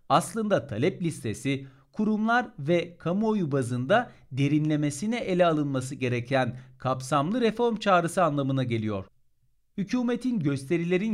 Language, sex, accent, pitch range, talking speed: Turkish, male, native, 130-190 Hz, 95 wpm